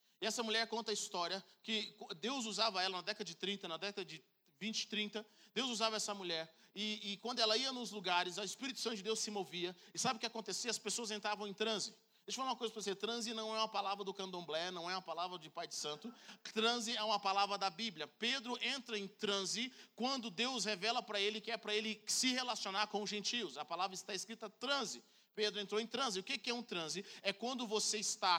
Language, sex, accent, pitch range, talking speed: Portuguese, male, Brazilian, 200-230 Hz, 235 wpm